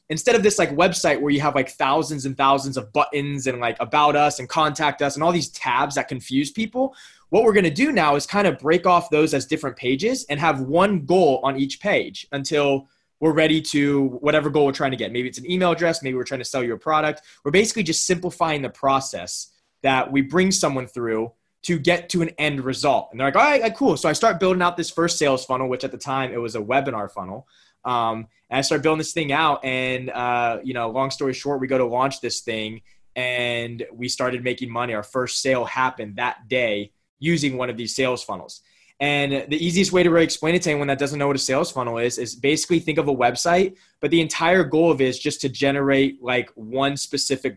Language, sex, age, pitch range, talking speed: English, male, 20-39, 130-160 Hz, 240 wpm